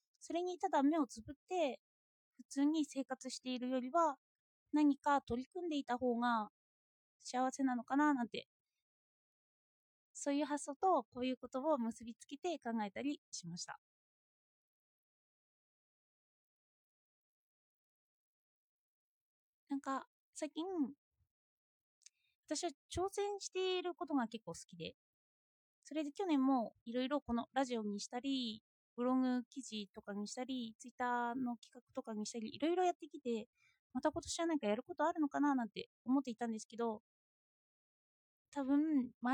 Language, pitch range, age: Japanese, 235-300 Hz, 20-39